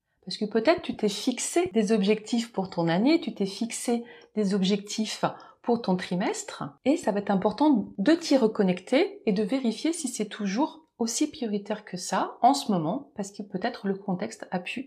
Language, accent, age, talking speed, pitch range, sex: French, French, 30-49, 190 wpm, 185-230 Hz, female